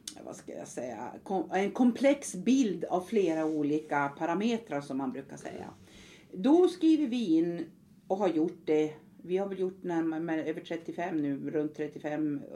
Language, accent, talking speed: Swedish, native, 160 wpm